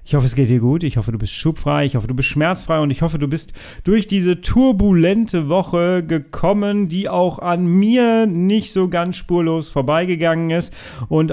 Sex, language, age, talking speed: male, German, 30-49, 195 wpm